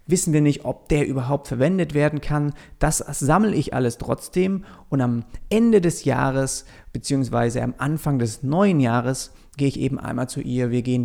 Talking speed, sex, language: 180 wpm, male, German